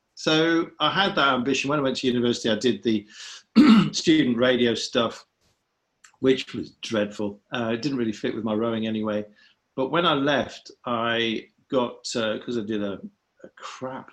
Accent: British